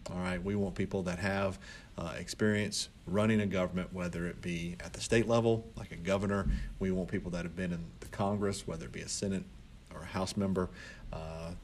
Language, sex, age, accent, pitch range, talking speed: English, male, 40-59, American, 85-100 Hz, 210 wpm